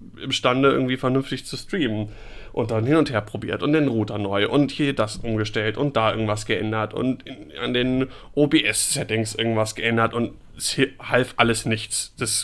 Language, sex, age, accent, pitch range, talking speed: German, male, 30-49, German, 110-135 Hz, 175 wpm